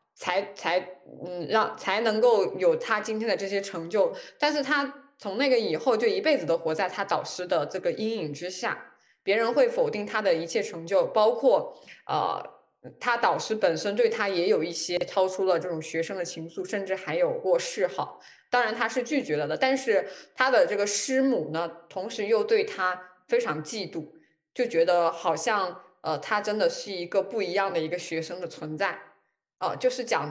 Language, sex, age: Chinese, female, 20-39